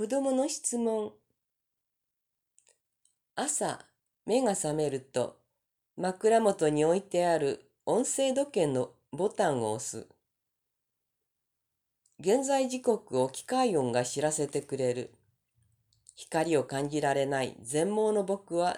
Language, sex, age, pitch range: Japanese, female, 40-59, 135-220 Hz